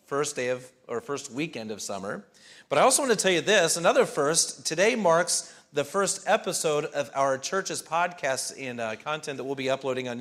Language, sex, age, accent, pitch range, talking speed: English, male, 40-59, American, 135-175 Hz, 205 wpm